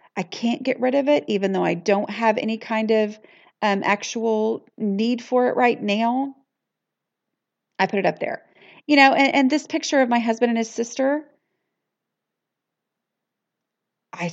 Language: English